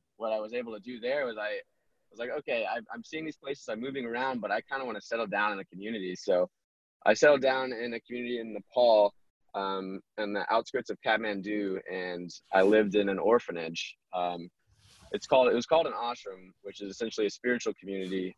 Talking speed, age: 210 wpm, 20-39